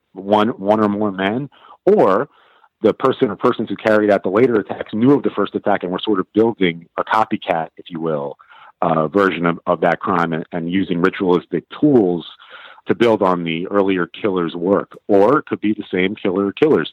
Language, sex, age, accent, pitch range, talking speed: English, male, 40-59, American, 90-105 Hz, 205 wpm